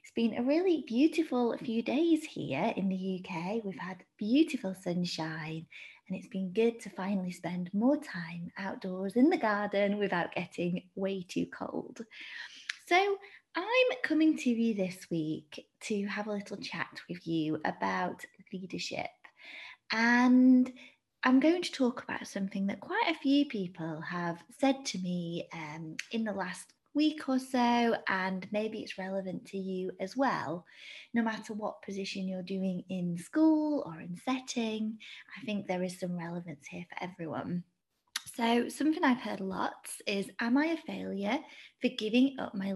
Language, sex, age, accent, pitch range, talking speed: English, female, 20-39, British, 185-265 Hz, 160 wpm